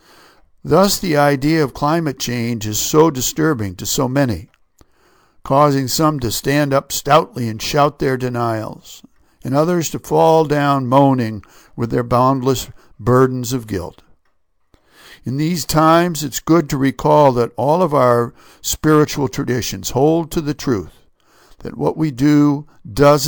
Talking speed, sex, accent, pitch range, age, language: 145 wpm, male, American, 120-150 Hz, 60-79, English